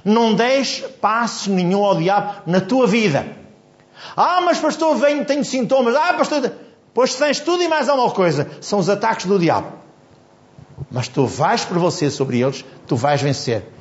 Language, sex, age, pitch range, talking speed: Portuguese, male, 60-79, 175-260 Hz, 170 wpm